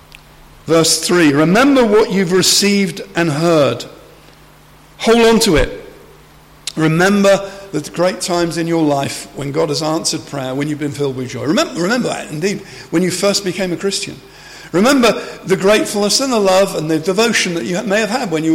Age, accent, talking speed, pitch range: 50-69, British, 180 wpm, 160-205 Hz